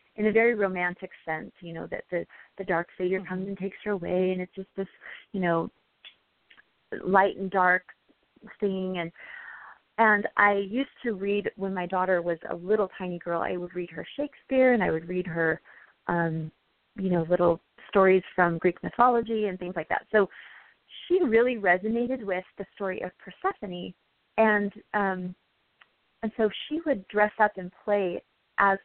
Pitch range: 180-215 Hz